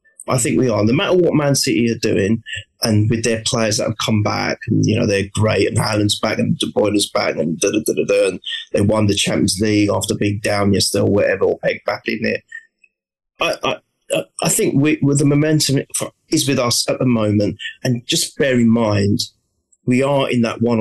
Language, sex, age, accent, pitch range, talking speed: English, male, 30-49, British, 115-160 Hz, 220 wpm